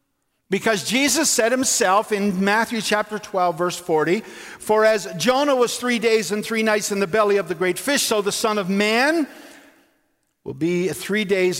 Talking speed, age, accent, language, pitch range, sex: 180 wpm, 50-69, American, English, 200-265 Hz, male